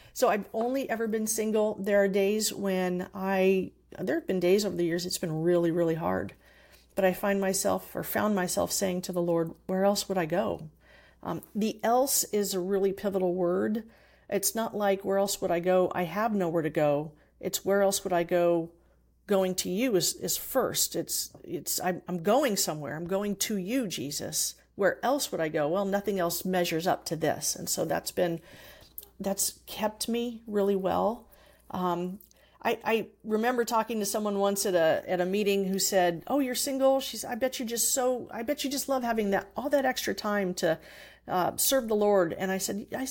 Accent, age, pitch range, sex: American, 50-69, 185-225 Hz, female